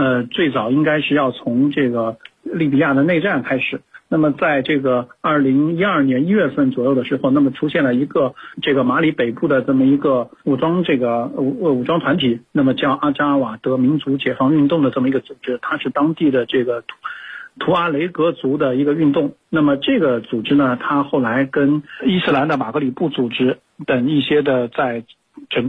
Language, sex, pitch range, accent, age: Chinese, male, 130-155 Hz, native, 50-69